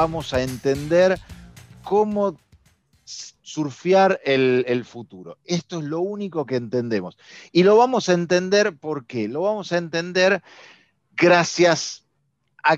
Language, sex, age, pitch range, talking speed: Spanish, male, 40-59, 140-180 Hz, 125 wpm